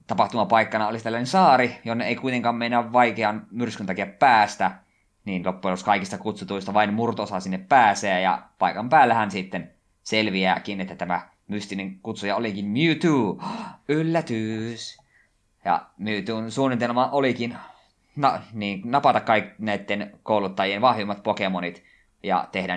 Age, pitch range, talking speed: 20-39, 95-115 Hz, 125 wpm